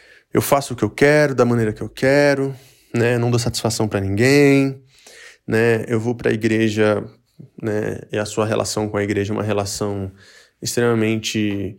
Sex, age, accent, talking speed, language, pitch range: male, 20-39, Brazilian, 175 wpm, Portuguese, 105-125 Hz